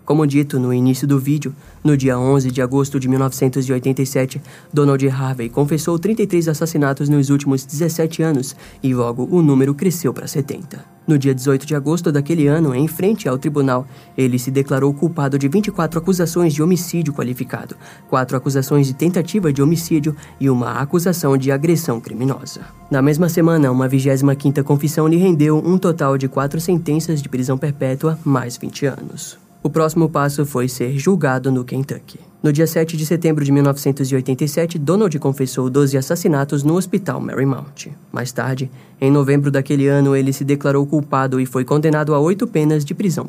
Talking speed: 170 wpm